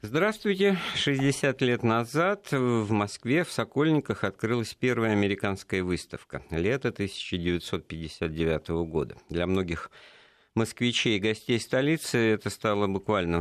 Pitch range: 80-110 Hz